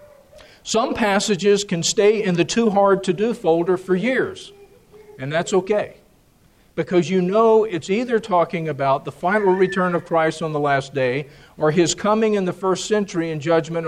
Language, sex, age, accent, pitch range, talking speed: English, male, 50-69, American, 165-205 Hz, 175 wpm